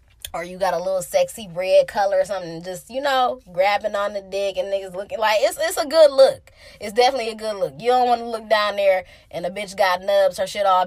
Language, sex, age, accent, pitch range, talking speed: English, female, 20-39, American, 210-295 Hz, 255 wpm